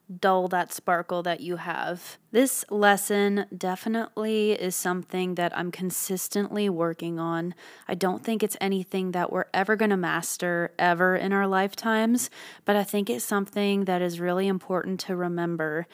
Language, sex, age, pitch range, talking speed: English, female, 20-39, 175-205 Hz, 160 wpm